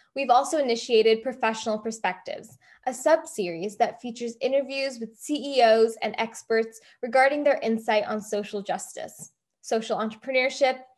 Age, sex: 10-29, female